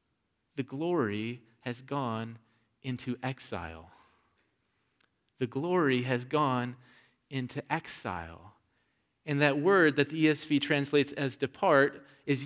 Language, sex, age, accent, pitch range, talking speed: English, male, 30-49, American, 115-155 Hz, 105 wpm